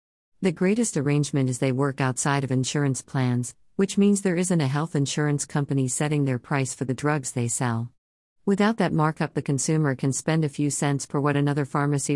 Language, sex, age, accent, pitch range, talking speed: English, female, 50-69, American, 130-155 Hz, 195 wpm